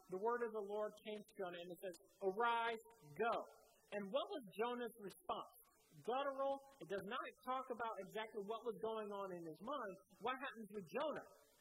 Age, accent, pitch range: 40-59, American, 200-250 Hz